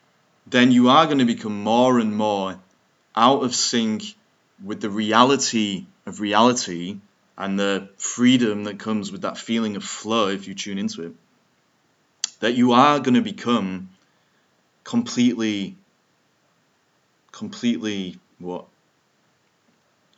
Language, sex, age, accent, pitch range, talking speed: English, male, 20-39, British, 105-150 Hz, 120 wpm